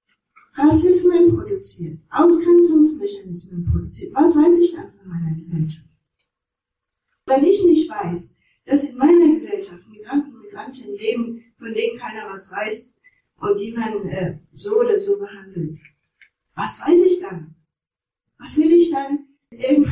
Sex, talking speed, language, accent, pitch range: female, 135 wpm, German, German, 185-310 Hz